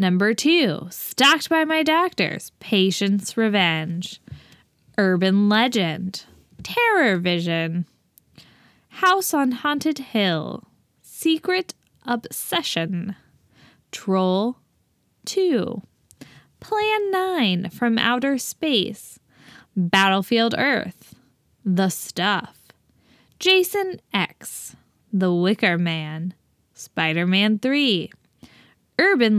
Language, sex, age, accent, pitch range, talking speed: English, female, 10-29, American, 185-295 Hz, 75 wpm